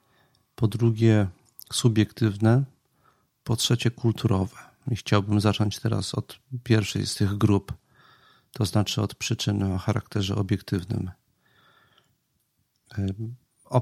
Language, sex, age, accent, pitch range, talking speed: Polish, male, 40-59, native, 100-120 Hz, 100 wpm